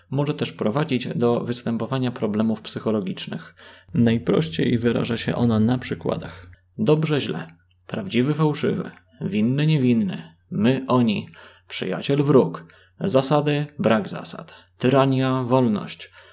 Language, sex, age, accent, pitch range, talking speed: Polish, male, 20-39, native, 115-140 Hz, 105 wpm